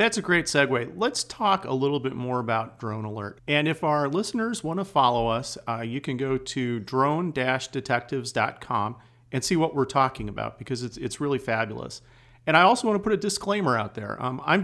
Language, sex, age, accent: English, male, 40-59, American